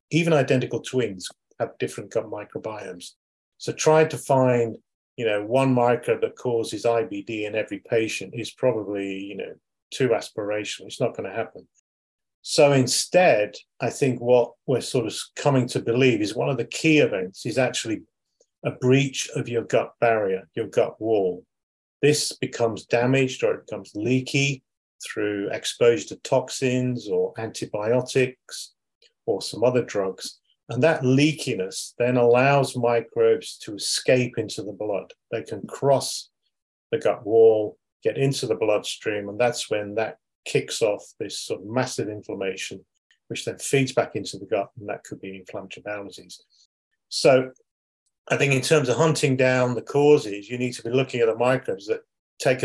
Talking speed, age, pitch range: 165 wpm, 40-59, 115-145 Hz